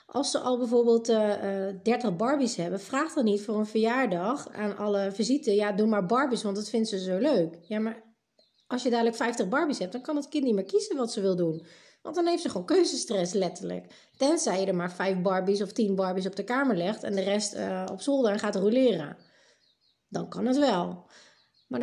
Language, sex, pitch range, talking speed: Dutch, female, 195-260 Hz, 225 wpm